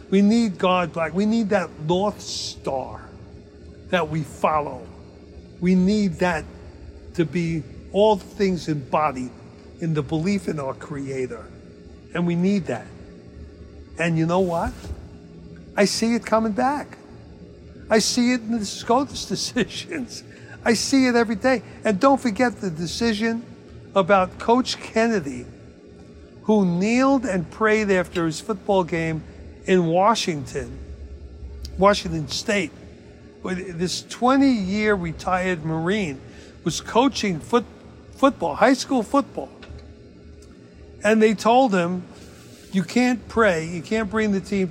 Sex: male